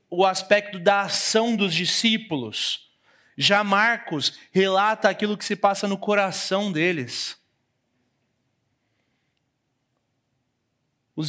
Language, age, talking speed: Portuguese, 30-49, 90 wpm